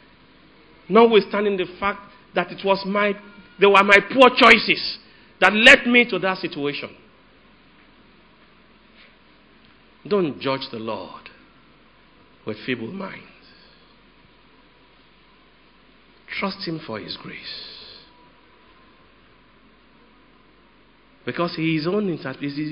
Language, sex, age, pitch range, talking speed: English, male, 50-69, 120-185 Hz, 80 wpm